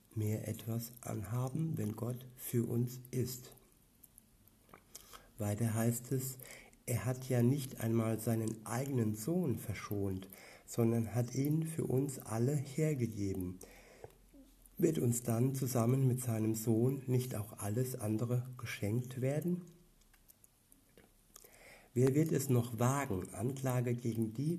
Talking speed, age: 115 wpm, 60-79